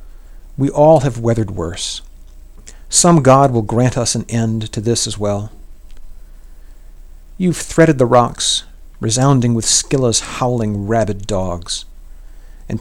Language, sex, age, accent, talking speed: English, male, 50-69, American, 125 wpm